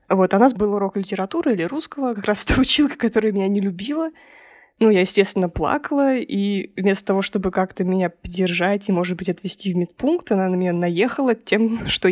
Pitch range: 185-220 Hz